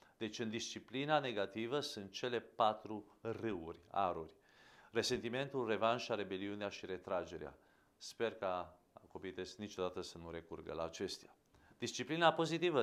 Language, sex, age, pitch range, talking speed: English, male, 40-59, 95-120 Hz, 120 wpm